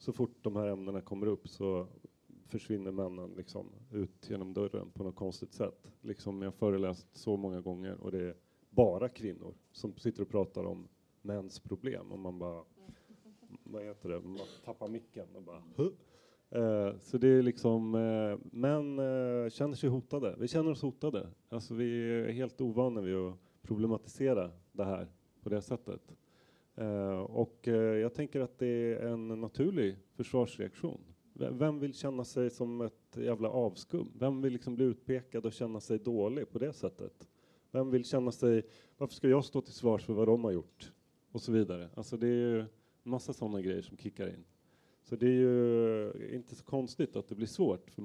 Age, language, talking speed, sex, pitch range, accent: 30-49, Swedish, 180 wpm, male, 100-125 Hz, native